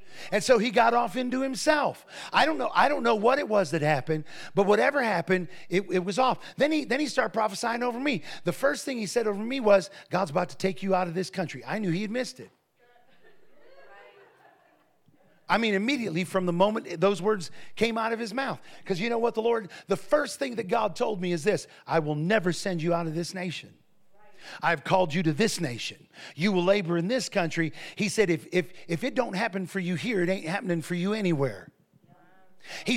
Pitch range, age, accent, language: 180-240 Hz, 40-59, American, English